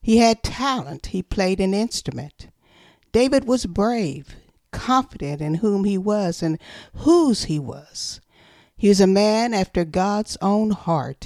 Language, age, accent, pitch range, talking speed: English, 50-69, American, 175-230 Hz, 145 wpm